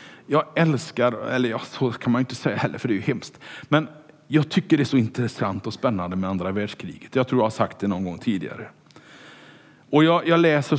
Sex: male